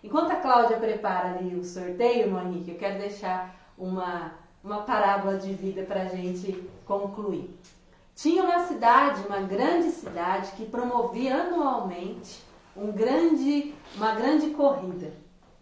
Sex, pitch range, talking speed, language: female, 190-270 Hz, 125 wpm, Portuguese